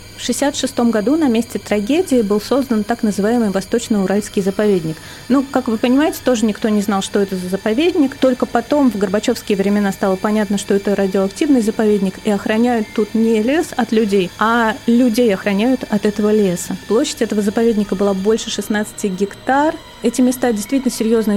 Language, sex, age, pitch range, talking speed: Russian, female, 30-49, 205-245 Hz, 165 wpm